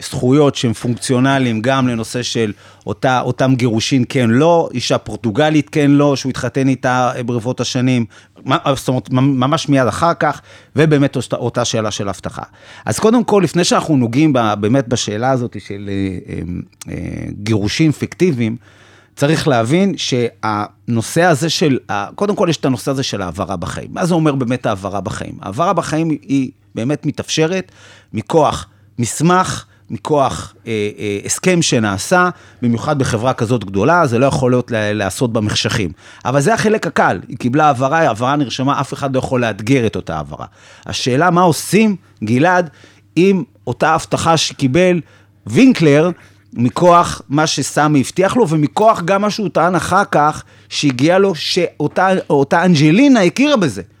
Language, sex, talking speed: Hebrew, male, 140 wpm